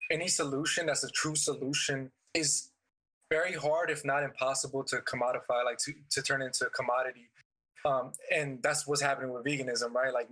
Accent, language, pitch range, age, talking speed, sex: American, English, 130-155 Hz, 20-39, 175 wpm, male